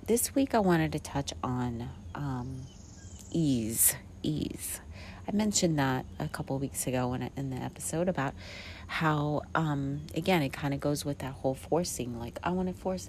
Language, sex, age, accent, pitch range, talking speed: English, female, 40-59, American, 95-155 Hz, 175 wpm